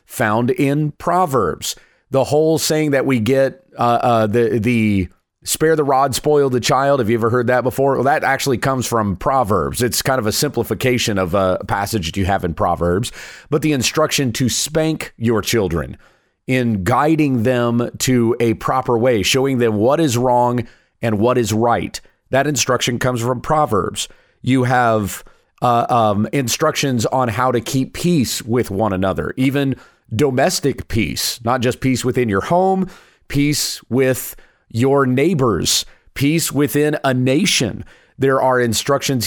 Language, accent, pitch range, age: English, American, 115-145 Hz, 30-49